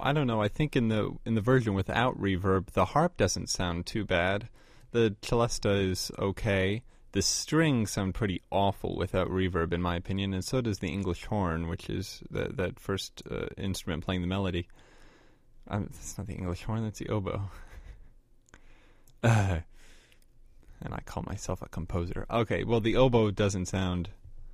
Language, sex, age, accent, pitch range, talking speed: English, male, 30-49, American, 90-110 Hz, 170 wpm